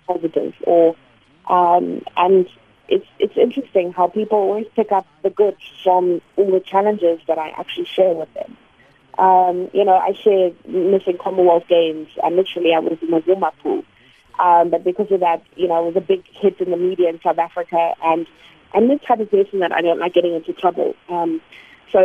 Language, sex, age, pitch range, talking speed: English, female, 30-49, 170-210 Hz, 200 wpm